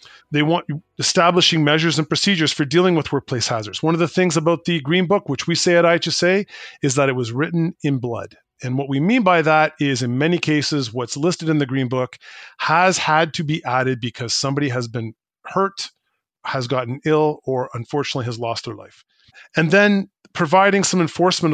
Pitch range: 135-170 Hz